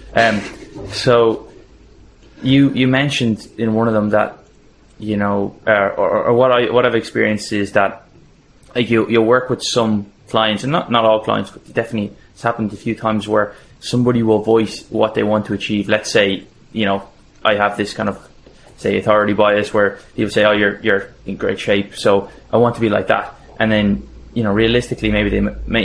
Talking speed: 200 wpm